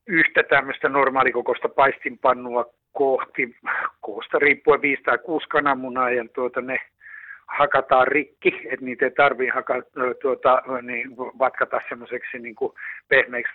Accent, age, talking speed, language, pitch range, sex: native, 60-79, 110 wpm, Finnish, 125-165 Hz, male